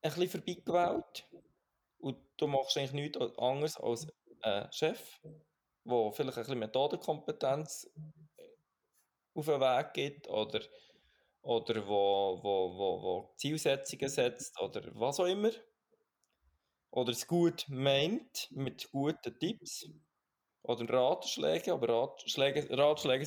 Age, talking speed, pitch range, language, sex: 20-39, 115 wpm, 115-155 Hz, German, male